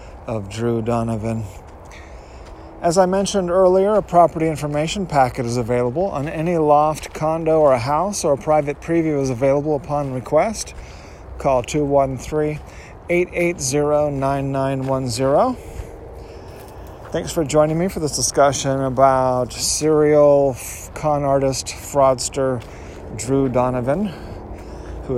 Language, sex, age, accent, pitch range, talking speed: English, male, 40-59, American, 100-145 Hz, 105 wpm